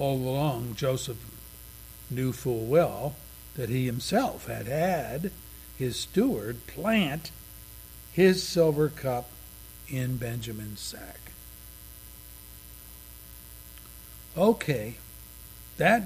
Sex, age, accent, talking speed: male, 60-79, American, 80 wpm